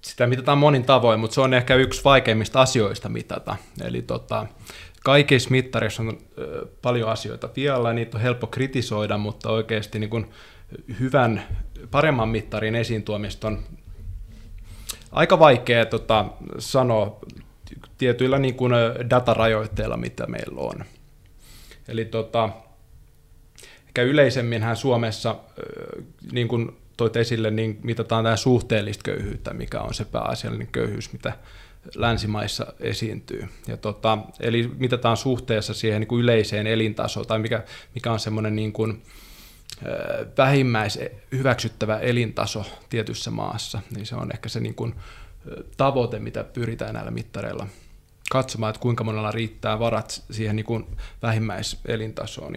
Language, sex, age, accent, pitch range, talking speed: Finnish, male, 20-39, native, 110-125 Hz, 125 wpm